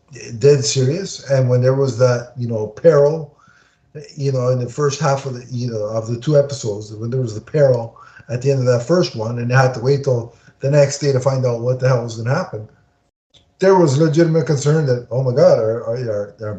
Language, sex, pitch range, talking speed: English, male, 120-145 Hz, 240 wpm